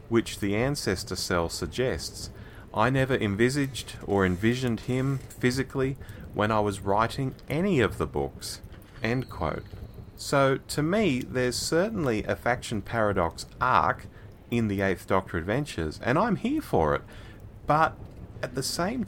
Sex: male